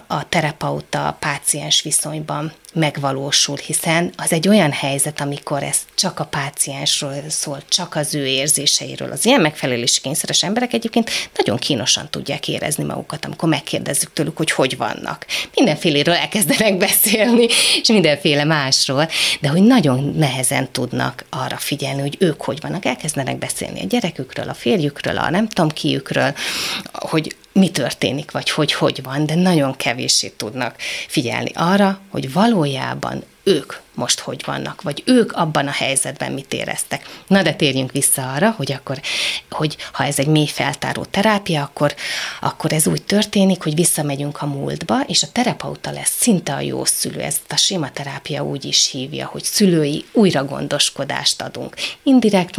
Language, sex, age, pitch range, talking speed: Hungarian, female, 30-49, 140-185 Hz, 155 wpm